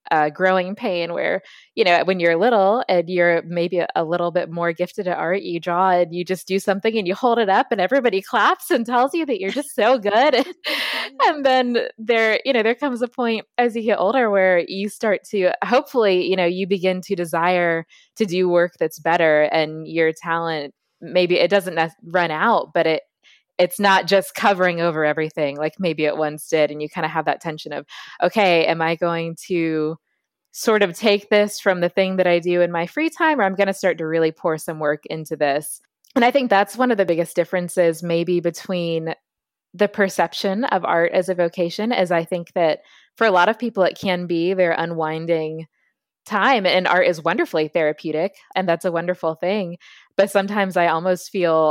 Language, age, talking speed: English, 20-39, 210 wpm